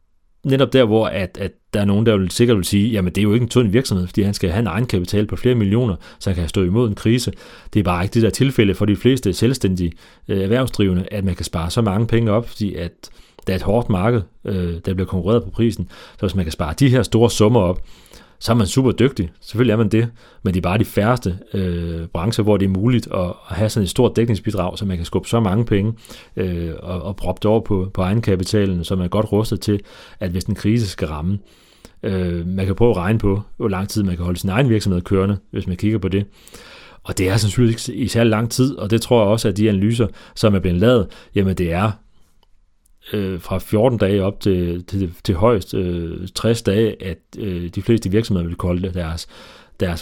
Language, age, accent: Danish, 30-49, native